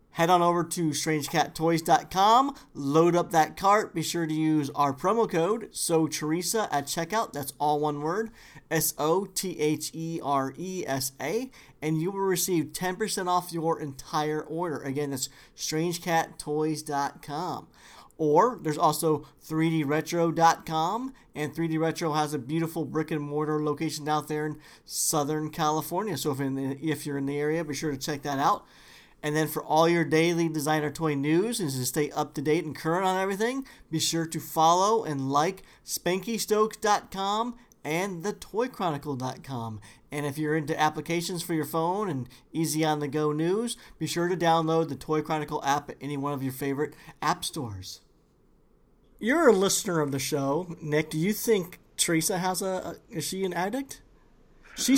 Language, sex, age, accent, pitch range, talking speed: English, male, 40-59, American, 150-175 Hz, 160 wpm